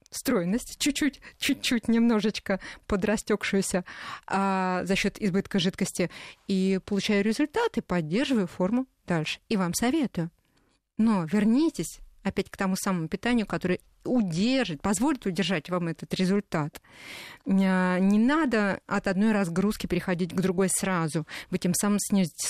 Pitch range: 185-230 Hz